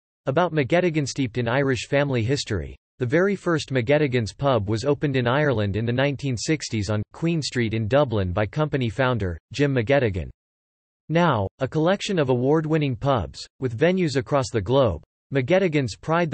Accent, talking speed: American, 155 wpm